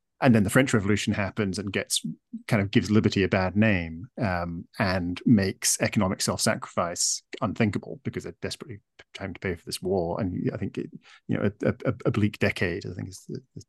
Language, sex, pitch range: English, male, 95-125 Hz